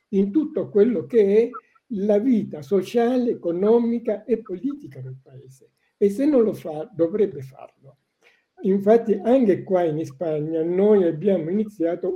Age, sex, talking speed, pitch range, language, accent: 60-79, male, 140 wpm, 155-230 Hz, Italian, native